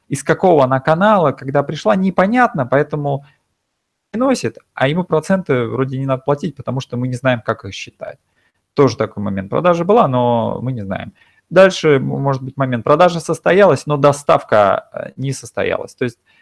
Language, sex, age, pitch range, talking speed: Russian, male, 30-49, 115-155 Hz, 165 wpm